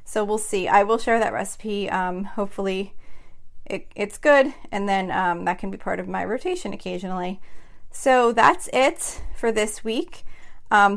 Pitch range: 195-230 Hz